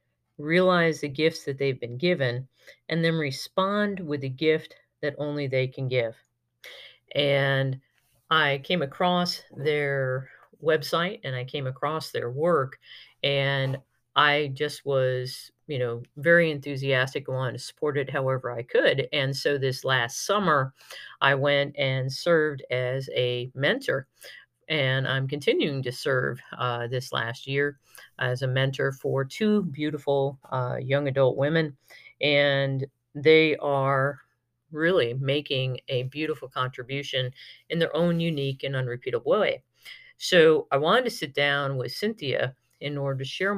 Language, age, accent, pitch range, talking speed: English, 40-59, American, 130-160 Hz, 145 wpm